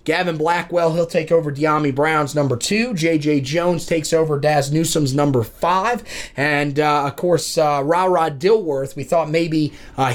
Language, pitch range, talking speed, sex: English, 145-170 Hz, 170 wpm, male